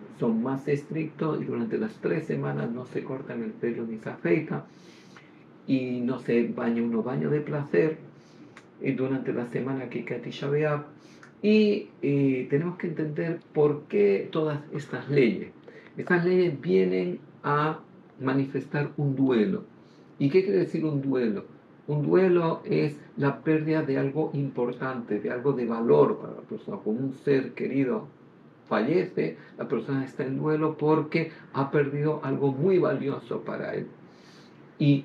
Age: 50-69